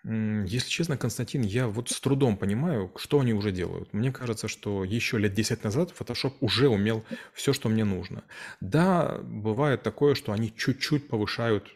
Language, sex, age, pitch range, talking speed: Russian, male, 30-49, 105-125 Hz, 170 wpm